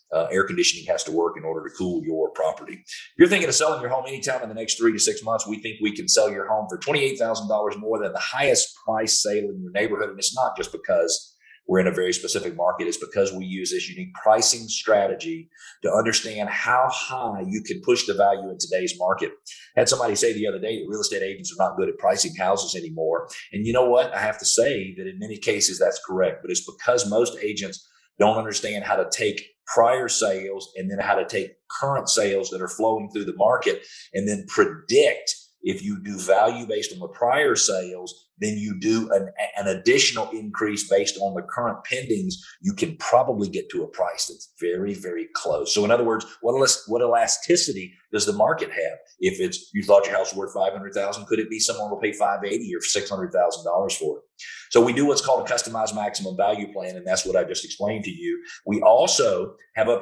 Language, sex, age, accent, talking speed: English, male, 40-59, American, 220 wpm